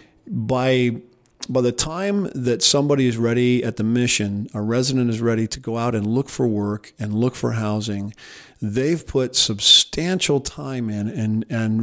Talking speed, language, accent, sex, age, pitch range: 170 wpm, English, American, male, 50-69, 110-130 Hz